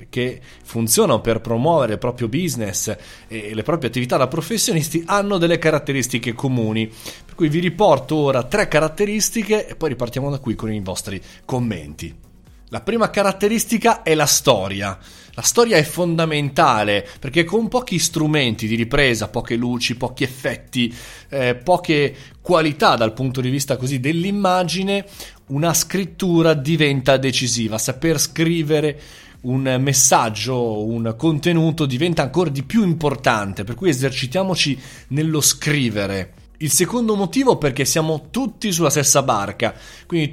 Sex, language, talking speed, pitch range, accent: male, Italian, 135 wpm, 120-175 Hz, native